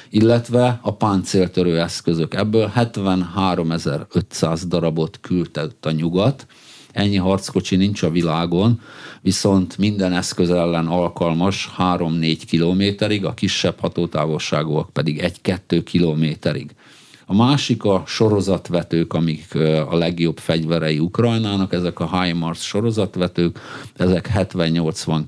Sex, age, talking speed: male, 50-69, 100 wpm